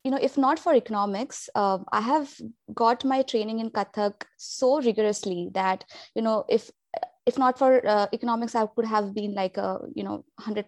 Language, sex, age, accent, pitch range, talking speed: English, female, 20-39, Indian, 185-225 Hz, 190 wpm